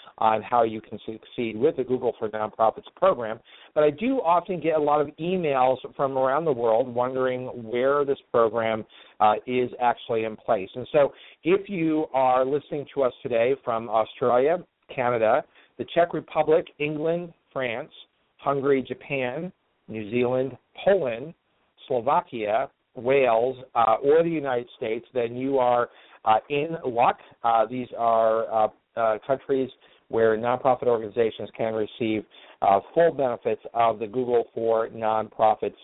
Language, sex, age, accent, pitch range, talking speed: English, male, 50-69, American, 115-145 Hz, 145 wpm